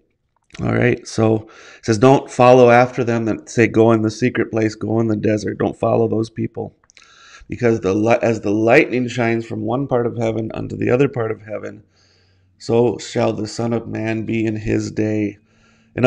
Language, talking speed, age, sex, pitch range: English, 195 wpm, 30-49, male, 110-120 Hz